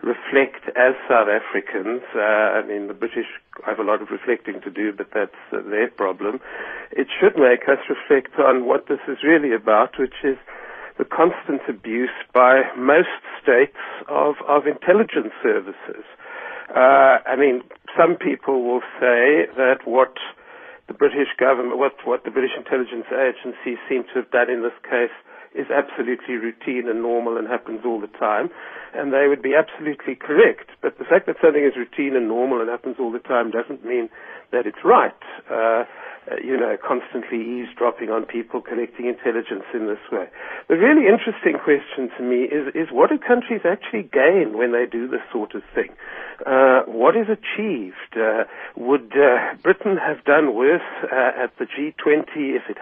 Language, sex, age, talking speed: English, male, 60-79, 175 wpm